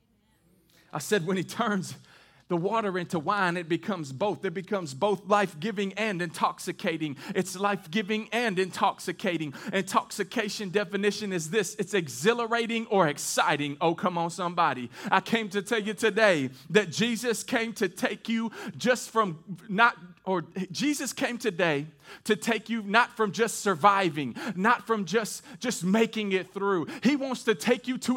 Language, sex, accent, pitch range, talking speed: English, male, American, 185-235 Hz, 155 wpm